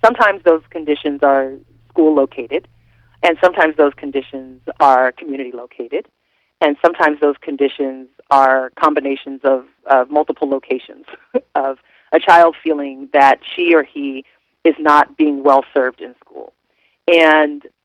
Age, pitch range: 30-49, 135-165 Hz